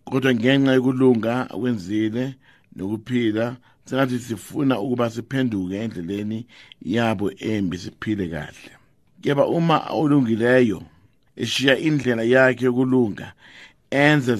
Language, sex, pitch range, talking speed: English, male, 110-130 Hz, 95 wpm